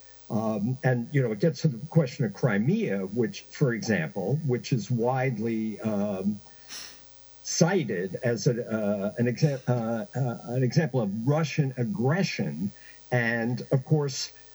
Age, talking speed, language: 60-79, 125 wpm, English